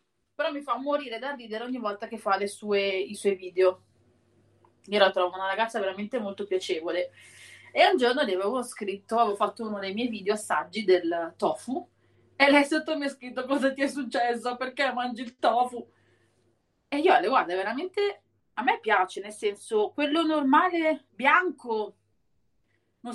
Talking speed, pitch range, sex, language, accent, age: 170 wpm, 200-280 Hz, female, Italian, native, 30-49